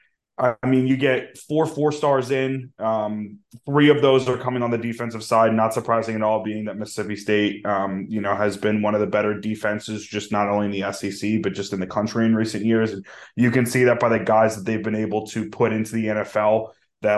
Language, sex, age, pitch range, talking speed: English, male, 20-39, 105-125 Hz, 235 wpm